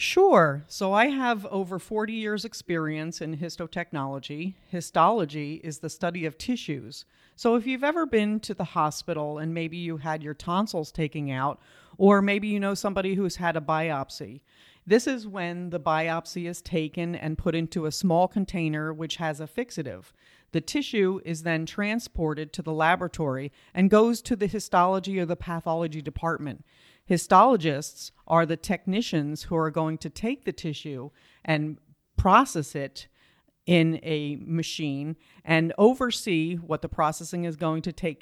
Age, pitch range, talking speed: 40-59, 155-190 Hz, 160 wpm